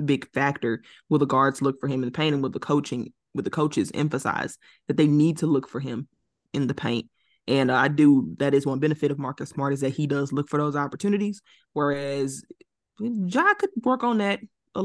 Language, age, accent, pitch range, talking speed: English, 20-39, American, 145-185 Hz, 220 wpm